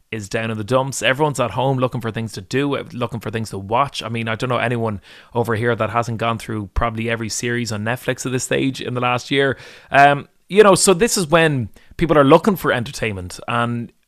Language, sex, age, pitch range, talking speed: English, male, 30-49, 110-130 Hz, 235 wpm